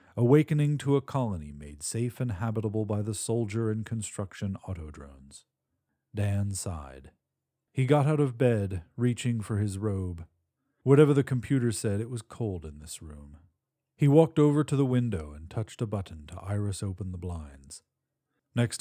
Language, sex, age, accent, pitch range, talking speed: English, male, 40-59, American, 90-125 Hz, 165 wpm